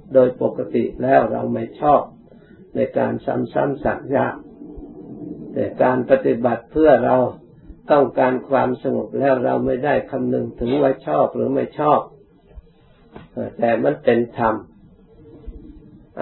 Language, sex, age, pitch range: Thai, male, 60-79, 110-135 Hz